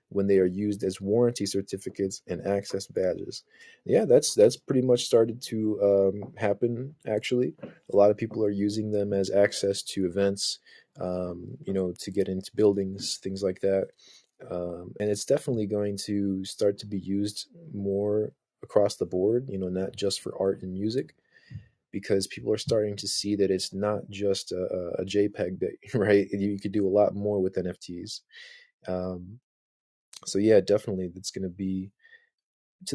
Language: English